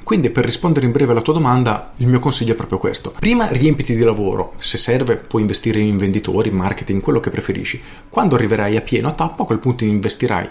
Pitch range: 105-125 Hz